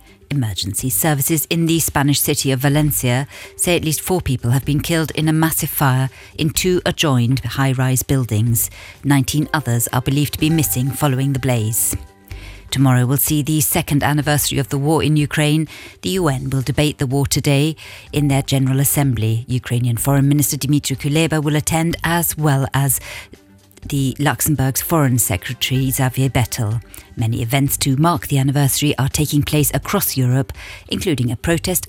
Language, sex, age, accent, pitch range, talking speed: English, female, 50-69, British, 125-150 Hz, 165 wpm